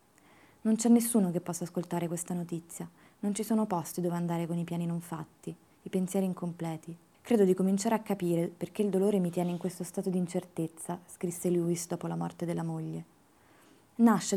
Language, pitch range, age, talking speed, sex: Italian, 170-205 Hz, 20-39, 190 wpm, female